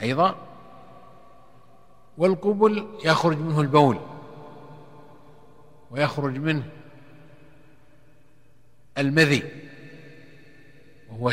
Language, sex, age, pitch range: Arabic, male, 50-69, 135-160 Hz